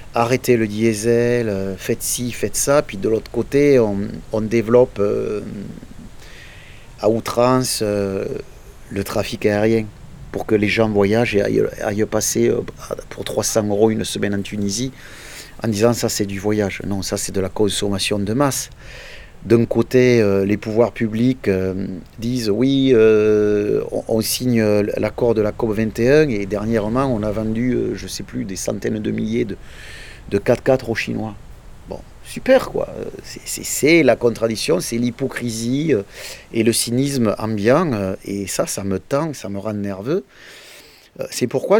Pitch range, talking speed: 105-125 Hz, 160 wpm